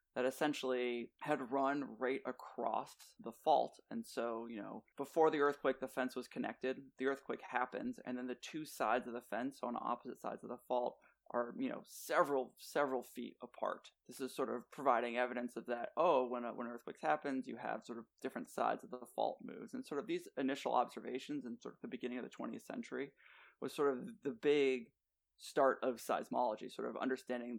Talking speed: 205 wpm